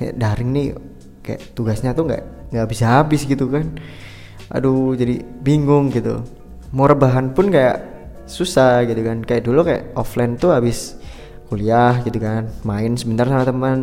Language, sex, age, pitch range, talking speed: Indonesian, male, 20-39, 115-140 Hz, 150 wpm